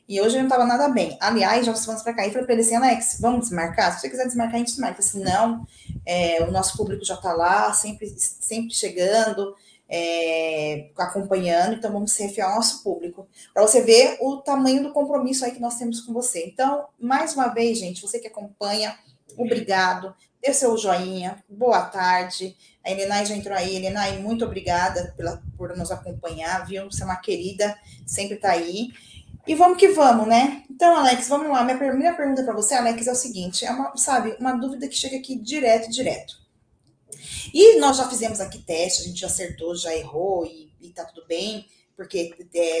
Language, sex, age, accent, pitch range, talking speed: Portuguese, female, 20-39, Brazilian, 185-255 Hz, 200 wpm